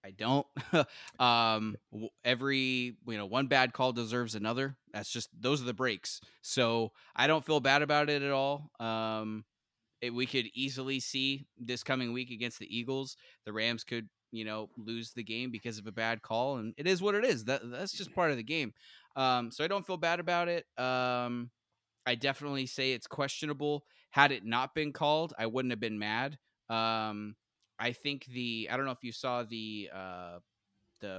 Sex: male